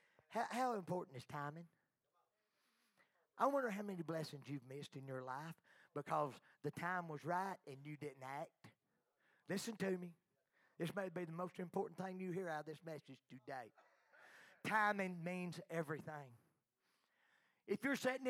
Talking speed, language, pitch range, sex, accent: 150 wpm, English, 155-235 Hz, male, American